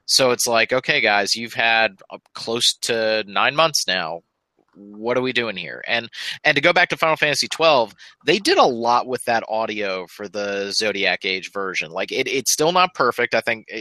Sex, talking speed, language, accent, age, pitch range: male, 200 wpm, English, American, 30-49, 105-125 Hz